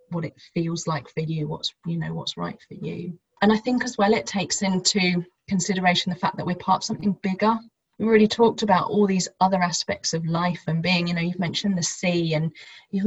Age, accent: 30-49, British